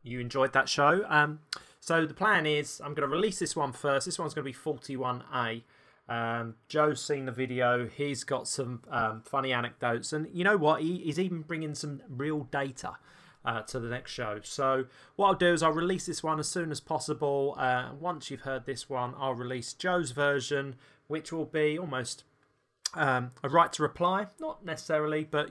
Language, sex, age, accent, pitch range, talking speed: English, male, 20-39, British, 125-155 Hz, 200 wpm